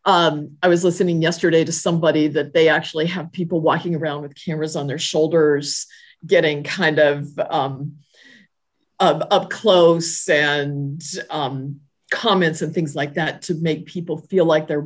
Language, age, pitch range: English, 50-69, 145-175 Hz